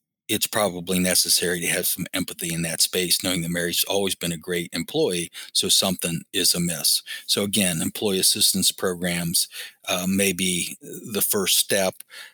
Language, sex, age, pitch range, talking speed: English, male, 40-59, 90-100 Hz, 160 wpm